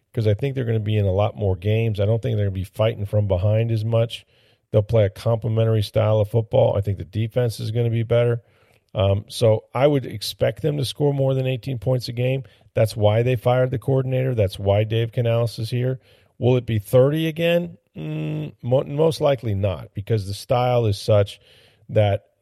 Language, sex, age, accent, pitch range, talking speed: English, male, 40-59, American, 100-120 Hz, 215 wpm